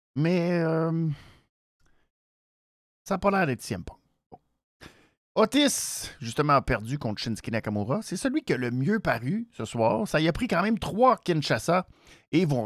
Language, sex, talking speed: French, male, 160 wpm